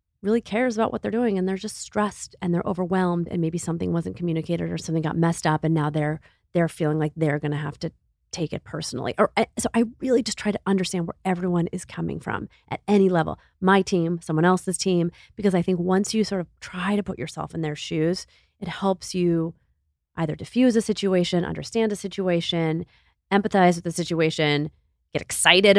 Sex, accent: female, American